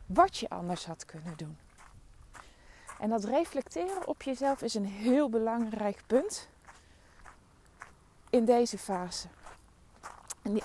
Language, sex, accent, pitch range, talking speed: Dutch, female, Dutch, 175-255 Hz, 115 wpm